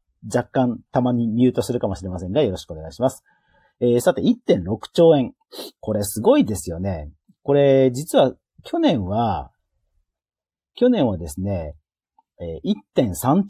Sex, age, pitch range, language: male, 40-59, 100-155 Hz, Japanese